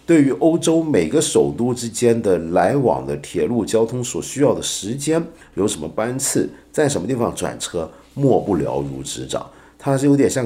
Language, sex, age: Chinese, male, 50-69